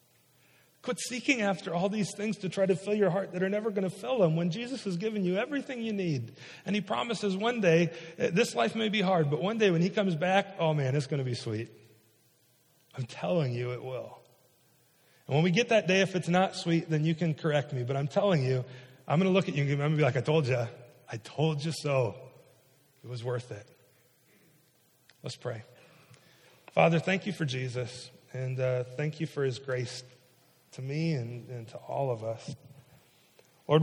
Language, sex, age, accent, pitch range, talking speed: English, male, 40-59, American, 130-165 Hz, 210 wpm